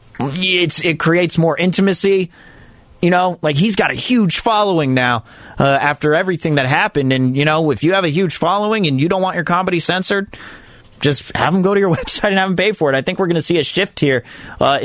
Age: 30-49